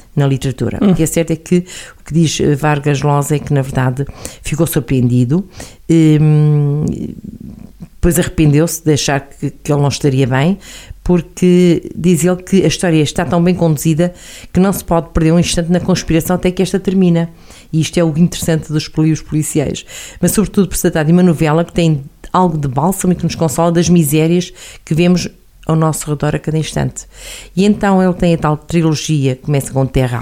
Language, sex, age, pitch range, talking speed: Portuguese, female, 50-69, 140-180 Hz, 195 wpm